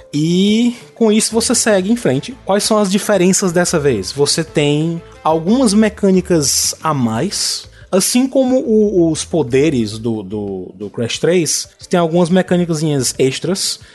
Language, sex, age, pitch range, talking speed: Portuguese, male, 20-39, 125-180 Hz, 140 wpm